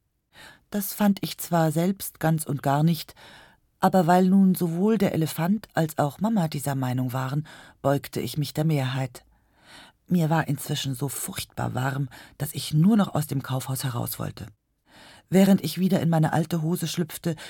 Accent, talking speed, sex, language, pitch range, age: German, 170 wpm, female, German, 135-190 Hz, 40-59